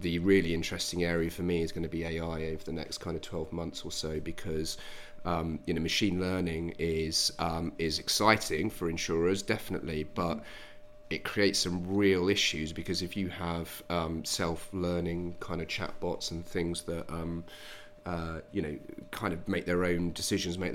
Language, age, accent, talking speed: English, 30-49, British, 175 wpm